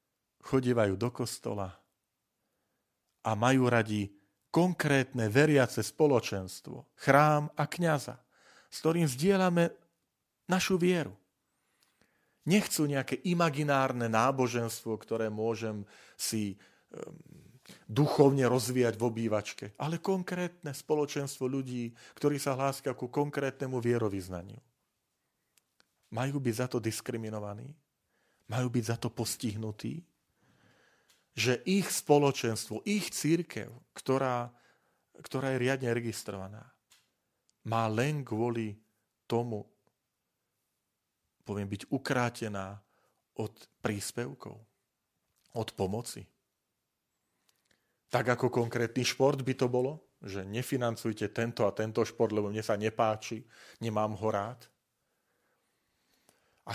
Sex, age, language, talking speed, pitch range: male, 40-59, Slovak, 95 wpm, 110-140 Hz